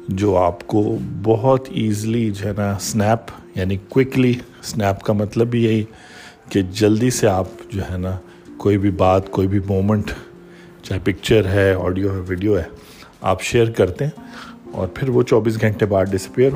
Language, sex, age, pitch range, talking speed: Urdu, male, 50-69, 95-115 Hz, 170 wpm